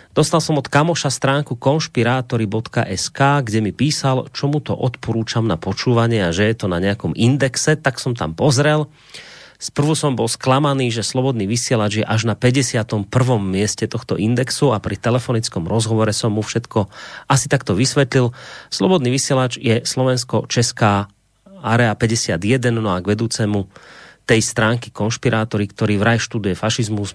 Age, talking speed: 30-49, 145 wpm